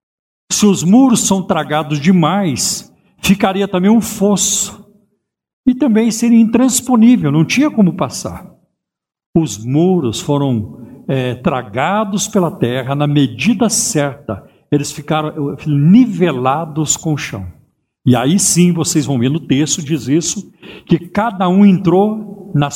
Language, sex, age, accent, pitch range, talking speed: Portuguese, male, 60-79, Brazilian, 135-195 Hz, 130 wpm